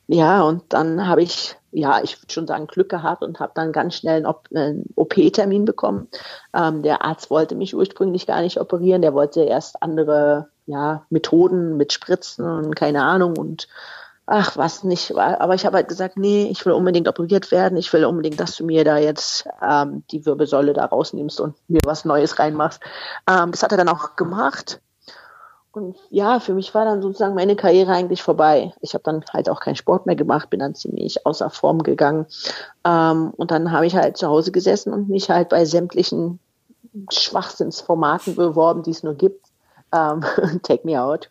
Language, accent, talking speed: German, German, 185 wpm